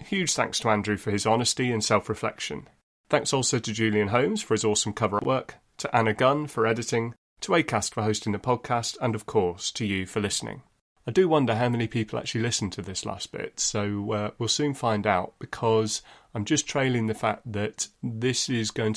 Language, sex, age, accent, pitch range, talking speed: English, male, 30-49, British, 105-120 Hz, 205 wpm